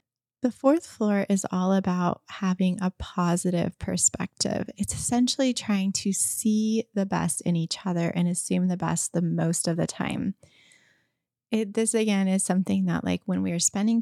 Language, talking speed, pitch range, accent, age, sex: English, 165 wpm, 170-205 Hz, American, 20-39, female